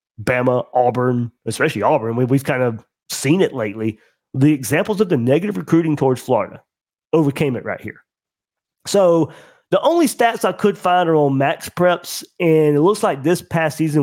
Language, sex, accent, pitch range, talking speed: English, male, American, 135-175 Hz, 170 wpm